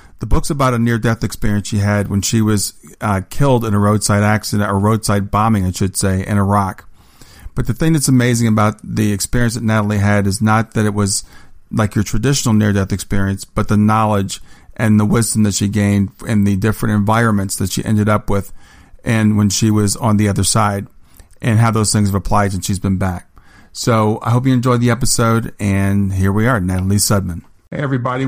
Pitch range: 100-115 Hz